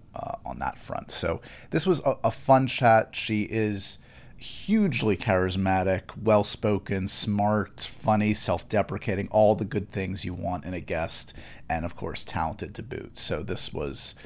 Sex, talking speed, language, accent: male, 155 wpm, English, American